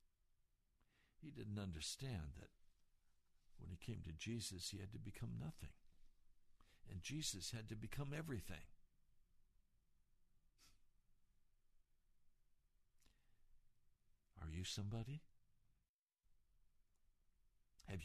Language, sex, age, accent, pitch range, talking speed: English, male, 60-79, American, 90-130 Hz, 80 wpm